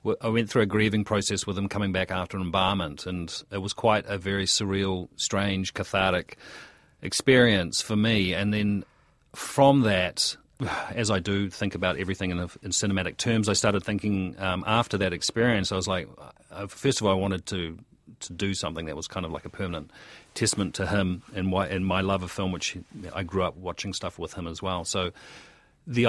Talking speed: 190 wpm